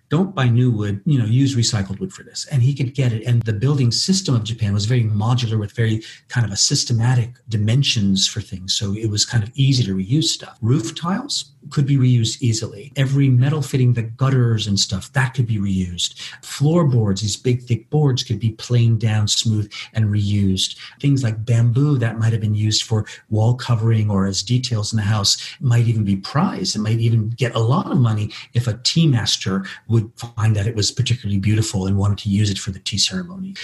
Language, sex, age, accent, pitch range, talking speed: English, male, 40-59, American, 110-130 Hz, 215 wpm